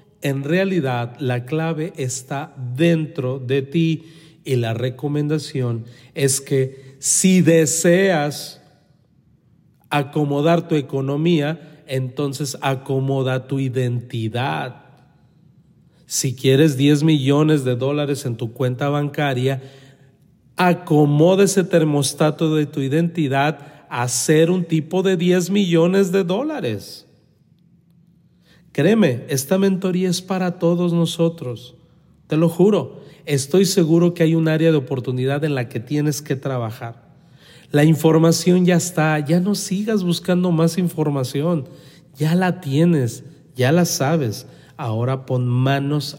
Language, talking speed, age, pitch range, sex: Spanish, 115 wpm, 40-59, 130-165 Hz, male